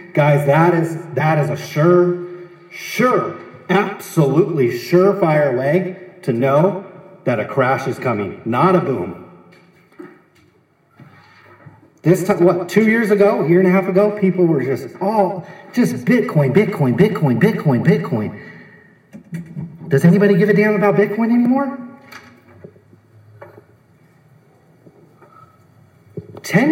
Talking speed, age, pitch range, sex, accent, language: 120 wpm, 40-59, 135-190 Hz, male, American, English